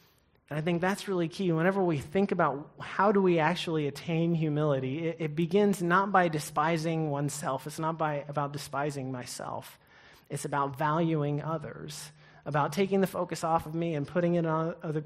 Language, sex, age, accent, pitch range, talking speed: English, male, 30-49, American, 150-190 Hz, 175 wpm